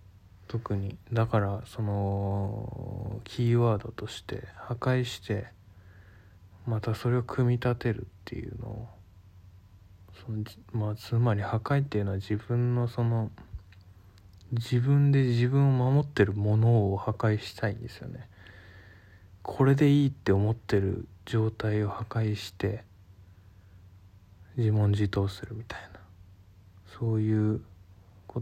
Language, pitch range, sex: Japanese, 95-115 Hz, male